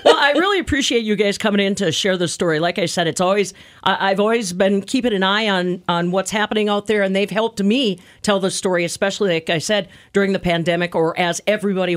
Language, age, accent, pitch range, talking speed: English, 50-69, American, 170-205 Hz, 230 wpm